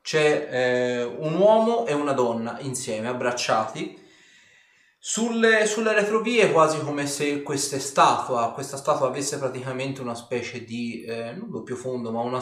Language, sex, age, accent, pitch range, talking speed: Italian, male, 30-49, native, 125-175 Hz, 140 wpm